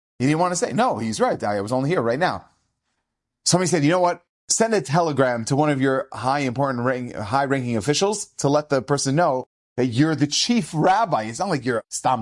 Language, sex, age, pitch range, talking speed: English, male, 30-49, 140-205 Hz, 235 wpm